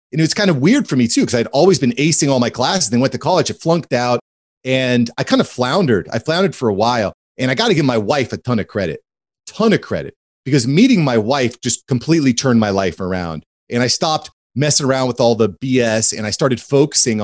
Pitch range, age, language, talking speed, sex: 115-150 Hz, 30-49, English, 245 wpm, male